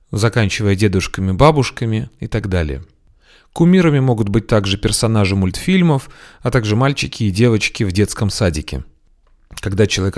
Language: Russian